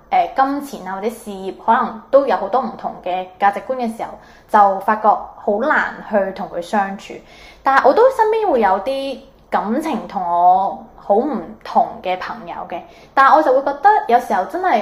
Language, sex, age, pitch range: Chinese, female, 20-39, 190-245 Hz